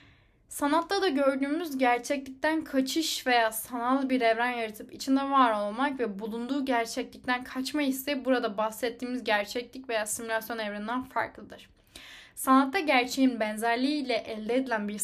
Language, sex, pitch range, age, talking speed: Turkish, female, 220-270 Hz, 10-29, 130 wpm